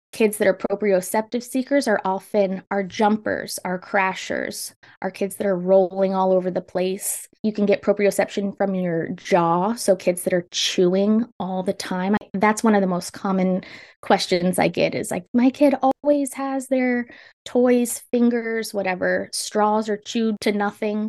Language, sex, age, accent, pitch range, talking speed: English, female, 20-39, American, 185-215 Hz, 170 wpm